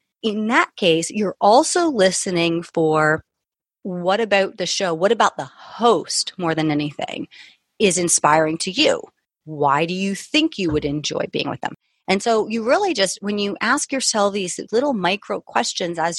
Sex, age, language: female, 30-49, English